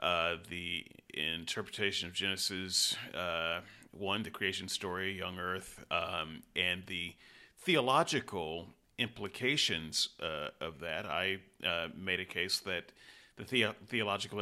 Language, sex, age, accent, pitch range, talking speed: English, male, 40-59, American, 90-110 Hz, 120 wpm